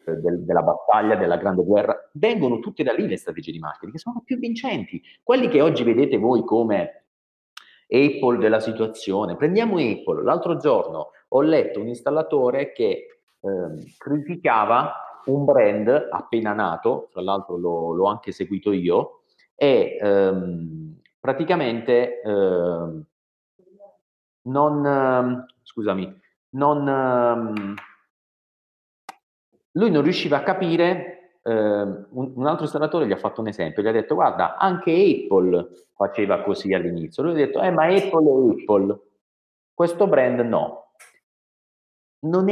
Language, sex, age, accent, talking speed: Italian, male, 40-59, native, 125 wpm